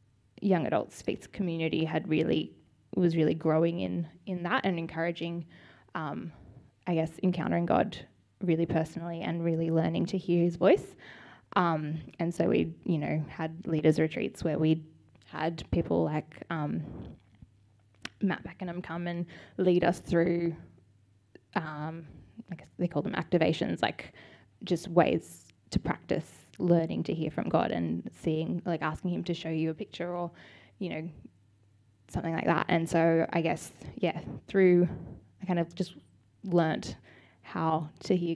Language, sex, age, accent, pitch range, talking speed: English, female, 10-29, Australian, 155-175 Hz, 150 wpm